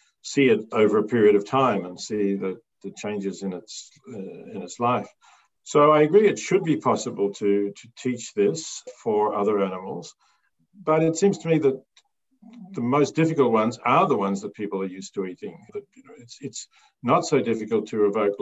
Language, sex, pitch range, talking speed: English, male, 105-135 Hz, 200 wpm